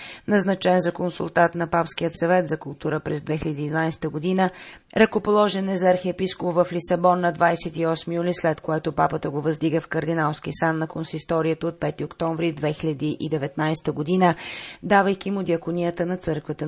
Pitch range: 155-180 Hz